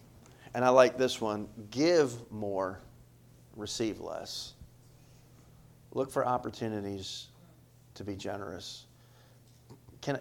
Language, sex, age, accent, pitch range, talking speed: English, male, 50-69, American, 110-130 Hz, 95 wpm